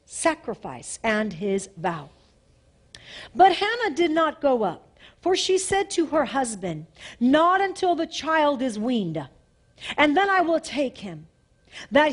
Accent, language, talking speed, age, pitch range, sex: American, English, 145 wpm, 50-69, 235-330 Hz, female